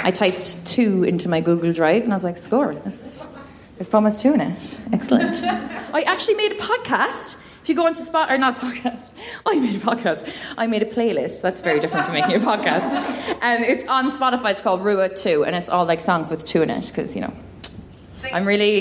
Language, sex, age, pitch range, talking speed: English, female, 20-39, 185-255 Hz, 220 wpm